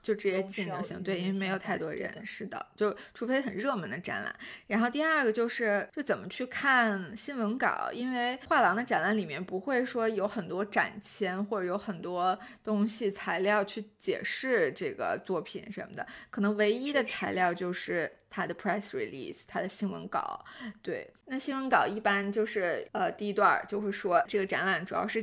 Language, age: Chinese, 20-39